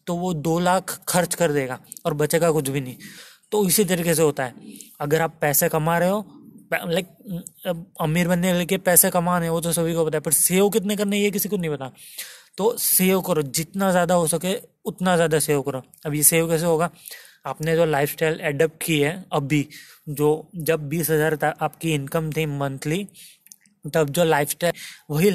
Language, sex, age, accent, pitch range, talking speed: Hindi, male, 20-39, native, 155-180 Hz, 195 wpm